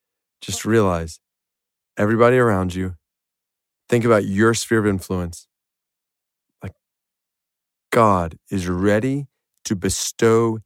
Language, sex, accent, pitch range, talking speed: English, male, American, 100-155 Hz, 95 wpm